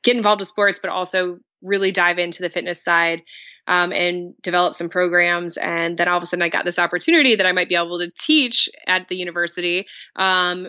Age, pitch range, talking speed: 20-39, 175-190 Hz, 215 wpm